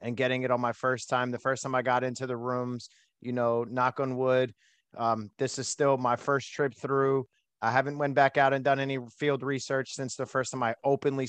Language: English